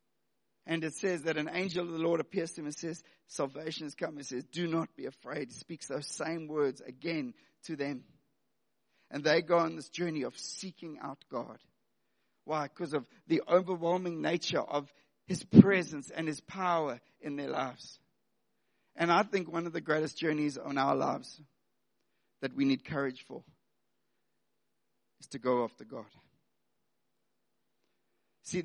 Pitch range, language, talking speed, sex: 150-190 Hz, English, 165 wpm, male